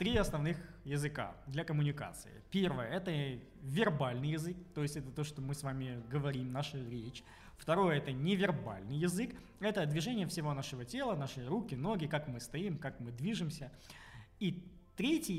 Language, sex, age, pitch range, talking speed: Russian, male, 20-39, 140-175 Hz, 155 wpm